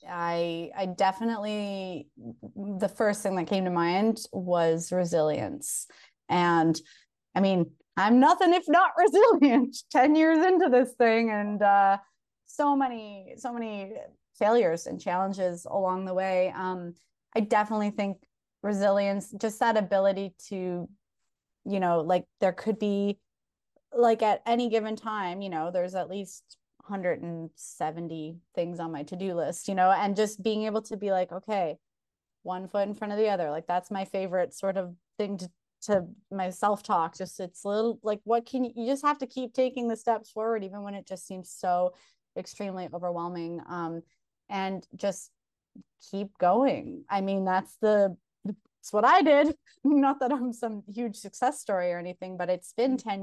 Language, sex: English, female